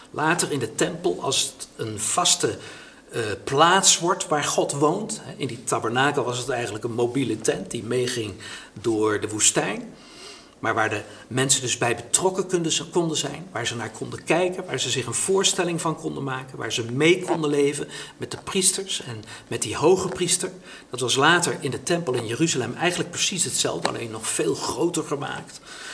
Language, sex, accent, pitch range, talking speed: Dutch, male, Dutch, 130-175 Hz, 185 wpm